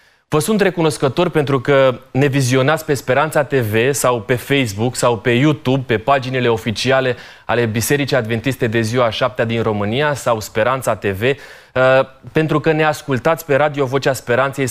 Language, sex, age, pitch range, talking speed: Romanian, male, 20-39, 120-145 Hz, 155 wpm